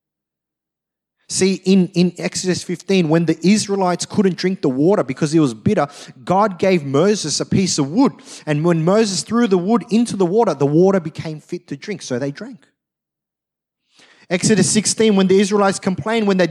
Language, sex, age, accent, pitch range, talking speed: English, male, 30-49, Australian, 175-220 Hz, 180 wpm